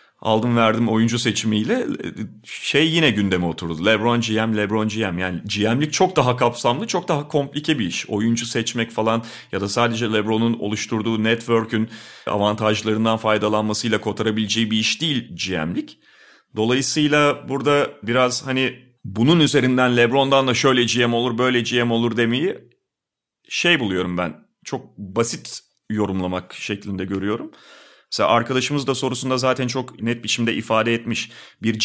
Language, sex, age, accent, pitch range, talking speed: Turkish, male, 40-59, native, 110-145 Hz, 135 wpm